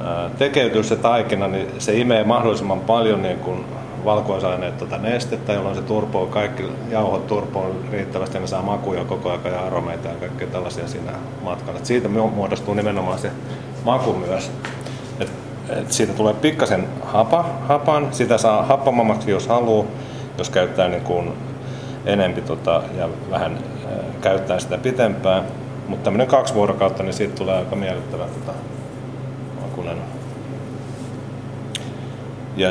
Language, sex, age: Finnish, male, 30-49